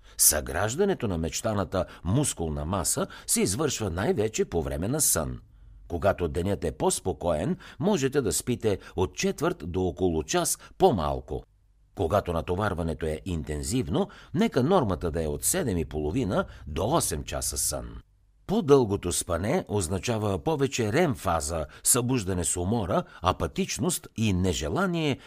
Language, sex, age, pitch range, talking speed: Bulgarian, male, 60-79, 85-130 Hz, 120 wpm